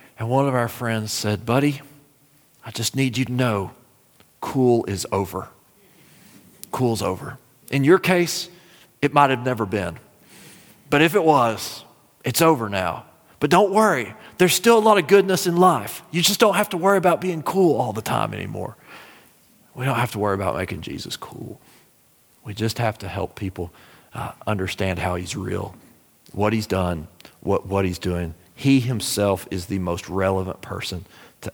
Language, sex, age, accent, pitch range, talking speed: English, male, 40-59, American, 100-150 Hz, 175 wpm